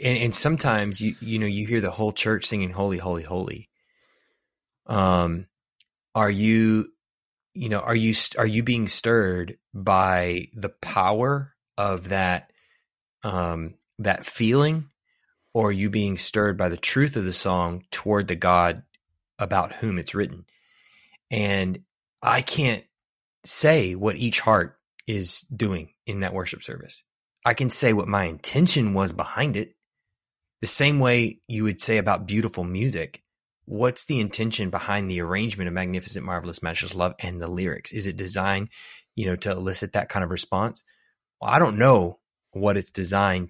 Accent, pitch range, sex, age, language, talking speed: American, 90-110 Hz, male, 20-39, English, 160 wpm